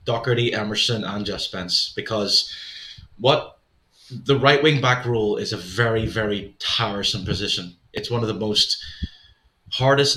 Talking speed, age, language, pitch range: 135 wpm, 20-39, English, 105-125 Hz